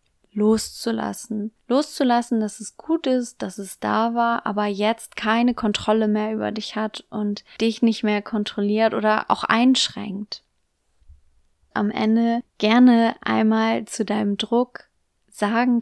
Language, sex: German, female